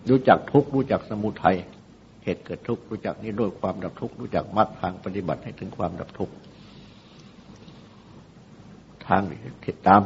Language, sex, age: Thai, male, 60-79